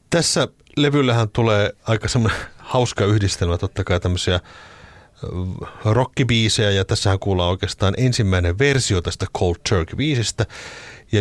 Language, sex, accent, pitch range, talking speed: Finnish, male, native, 90-115 Hz, 120 wpm